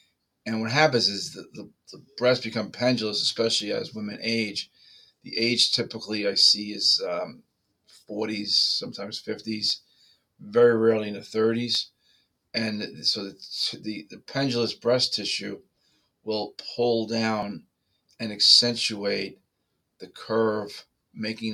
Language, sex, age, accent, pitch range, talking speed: English, male, 40-59, American, 105-125 Hz, 125 wpm